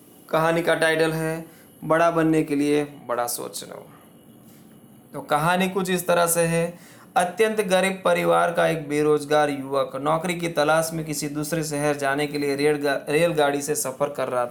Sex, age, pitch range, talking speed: male, 20-39, 150-195 Hz, 175 wpm